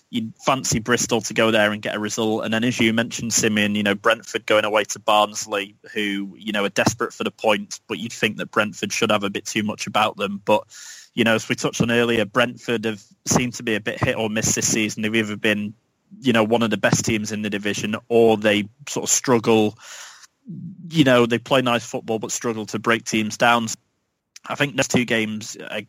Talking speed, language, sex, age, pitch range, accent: 235 wpm, English, male, 20-39, 105-120 Hz, British